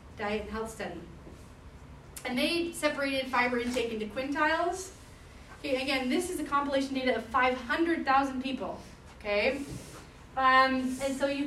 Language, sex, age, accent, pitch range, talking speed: English, female, 30-49, American, 220-280 Hz, 135 wpm